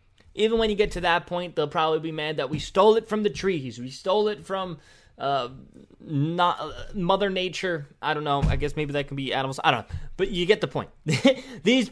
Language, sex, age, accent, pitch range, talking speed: English, male, 20-39, American, 140-180 Hz, 230 wpm